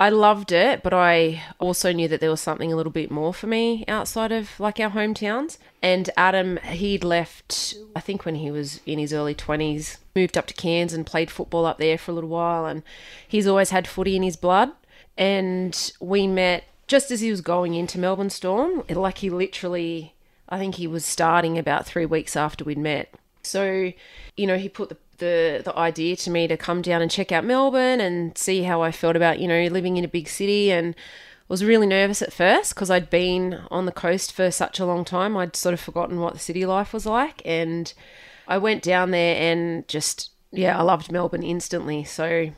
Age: 30-49